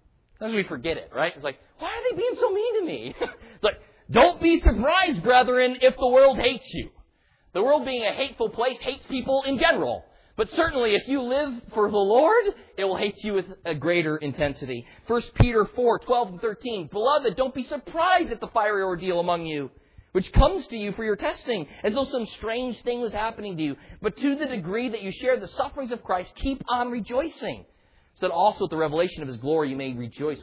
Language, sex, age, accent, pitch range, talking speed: English, male, 40-59, American, 190-275 Hz, 215 wpm